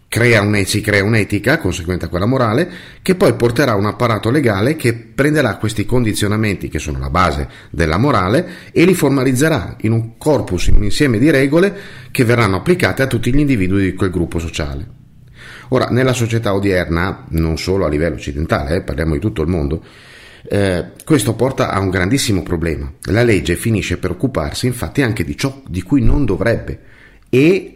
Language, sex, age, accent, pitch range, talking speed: Italian, male, 40-59, native, 90-125 Hz, 175 wpm